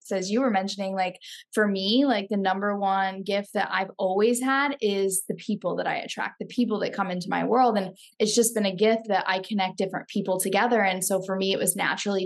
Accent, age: American, 10-29